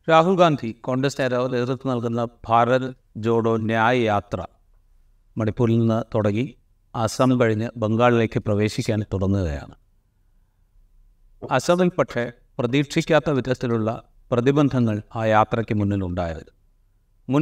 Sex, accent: male, native